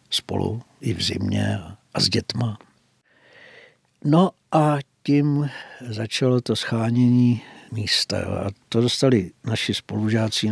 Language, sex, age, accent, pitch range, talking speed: Czech, male, 60-79, native, 105-120 Hz, 120 wpm